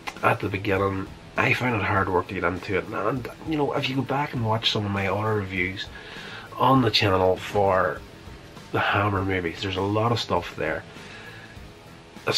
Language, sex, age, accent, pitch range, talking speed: English, male, 30-49, Irish, 95-110 Hz, 195 wpm